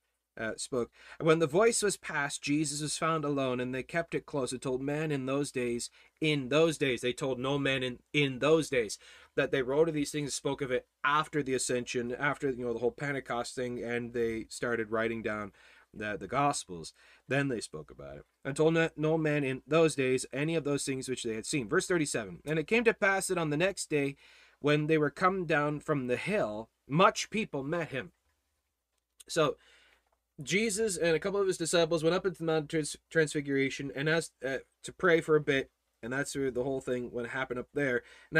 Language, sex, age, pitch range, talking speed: English, male, 30-49, 125-165 Hz, 220 wpm